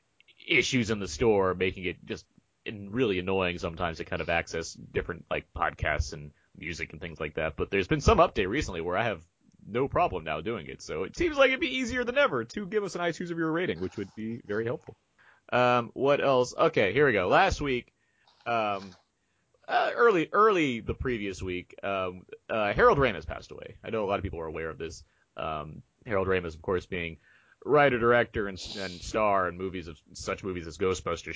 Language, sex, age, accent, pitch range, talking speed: English, male, 30-49, American, 90-135 Hz, 210 wpm